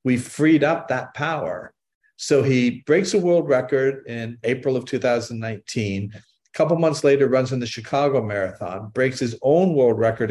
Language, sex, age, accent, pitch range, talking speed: English, male, 50-69, American, 115-145 Hz, 170 wpm